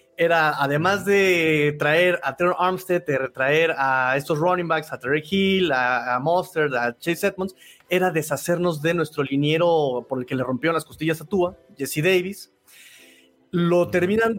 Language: Spanish